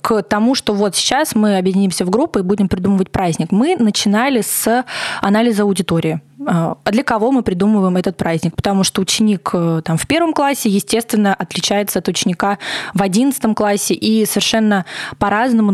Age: 20-39